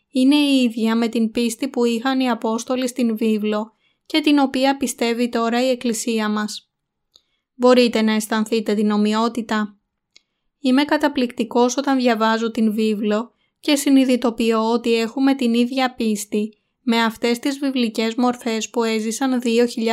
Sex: female